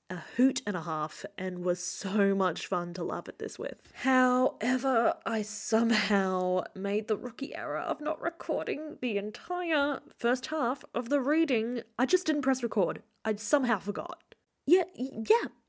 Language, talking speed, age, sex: English, 160 wpm, 10-29, female